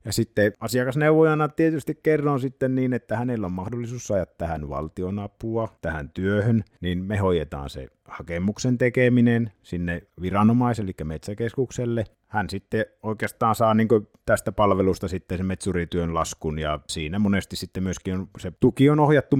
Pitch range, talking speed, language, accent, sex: 85-110 Hz, 150 wpm, Finnish, native, male